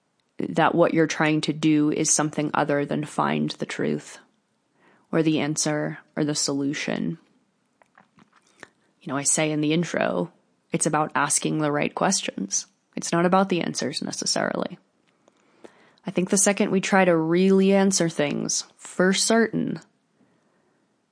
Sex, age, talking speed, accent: female, 20-39, 140 wpm, American